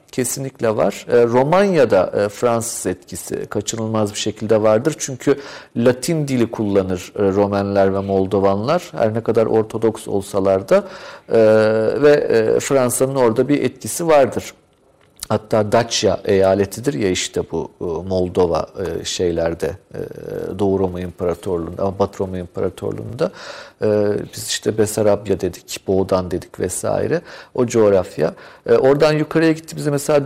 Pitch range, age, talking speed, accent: 110-155 Hz, 50-69, 120 wpm, native